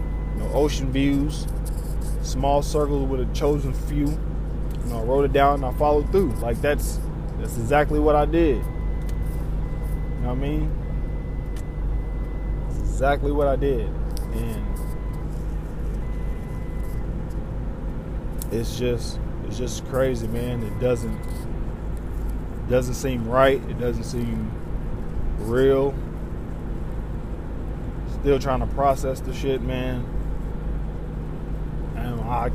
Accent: American